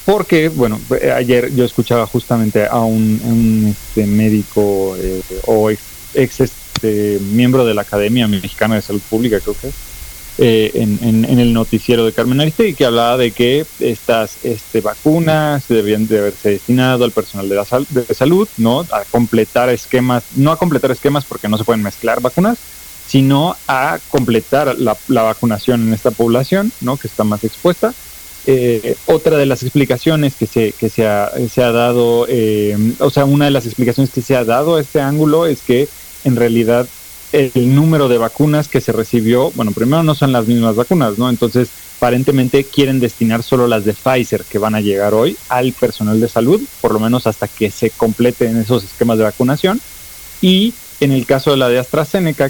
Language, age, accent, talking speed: Spanish, 30-49, Mexican, 190 wpm